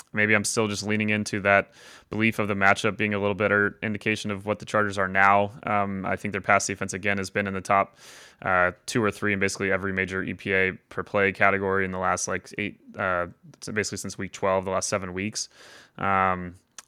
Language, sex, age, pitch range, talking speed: English, male, 20-39, 100-115 Hz, 220 wpm